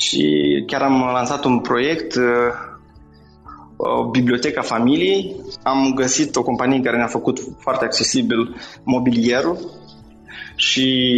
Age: 20-39